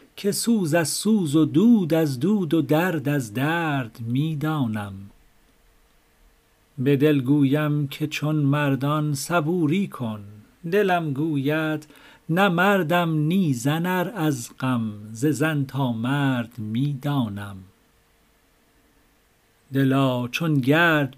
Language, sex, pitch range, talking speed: Persian, male, 130-160 Hz, 110 wpm